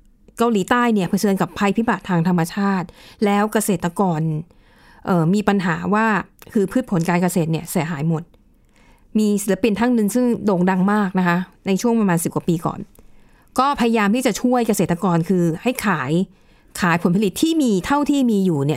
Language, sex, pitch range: Thai, female, 185-235 Hz